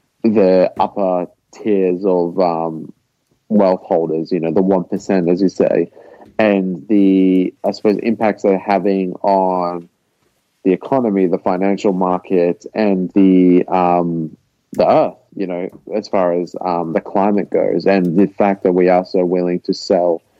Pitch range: 90-105 Hz